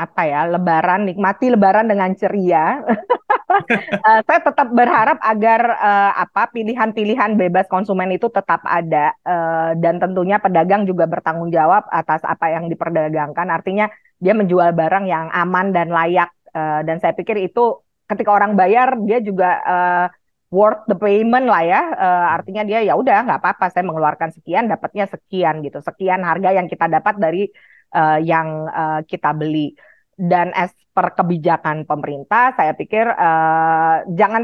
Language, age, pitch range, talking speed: Indonesian, 30-49, 170-210 Hz, 155 wpm